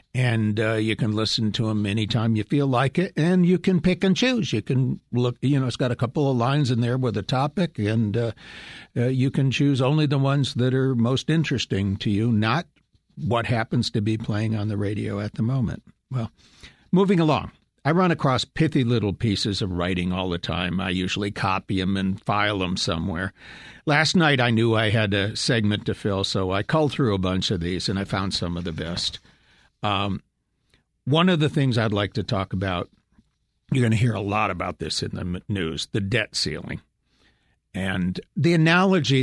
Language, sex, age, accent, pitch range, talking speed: English, male, 60-79, American, 100-140 Hz, 205 wpm